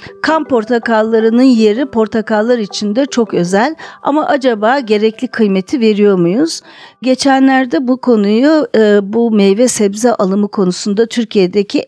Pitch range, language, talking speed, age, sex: 200-255 Hz, Turkish, 115 wpm, 50-69, female